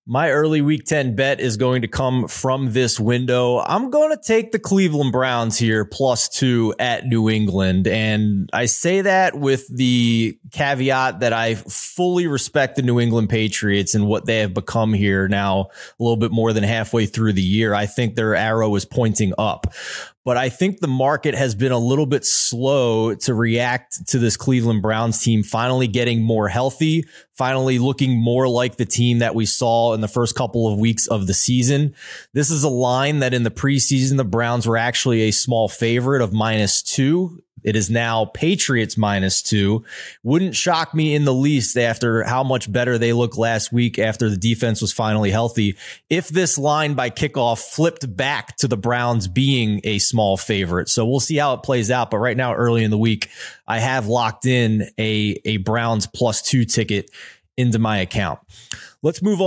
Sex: male